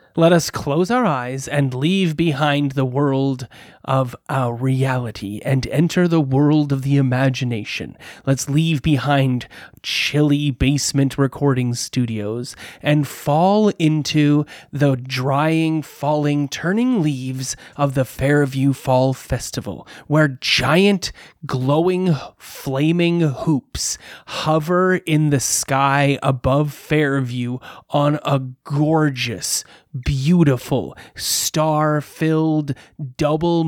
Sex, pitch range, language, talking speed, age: male, 130-160 Hz, English, 105 wpm, 30-49